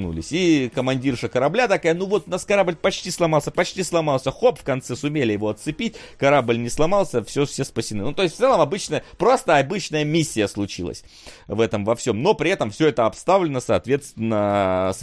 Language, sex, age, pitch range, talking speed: Russian, male, 30-49, 110-160 Hz, 190 wpm